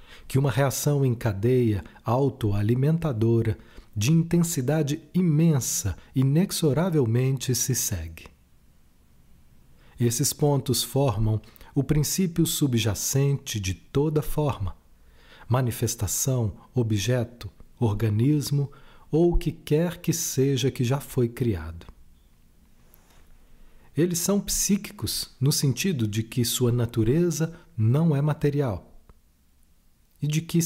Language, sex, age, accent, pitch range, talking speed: Portuguese, male, 40-59, Brazilian, 105-155 Hz, 95 wpm